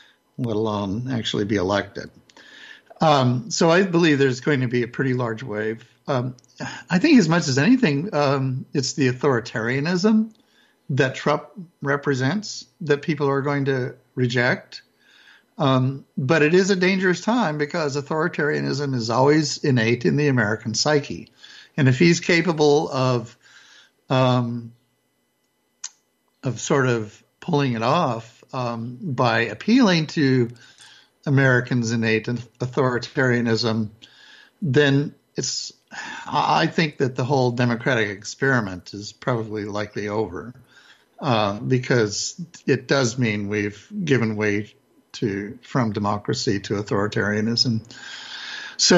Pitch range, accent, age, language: 120-150 Hz, American, 60-79, English